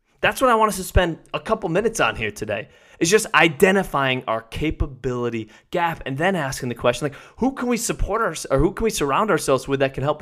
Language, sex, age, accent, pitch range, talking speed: English, male, 20-39, American, 130-185 Hz, 230 wpm